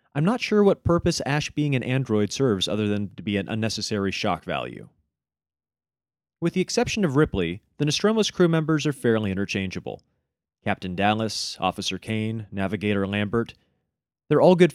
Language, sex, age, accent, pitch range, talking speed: English, male, 30-49, American, 105-150 Hz, 160 wpm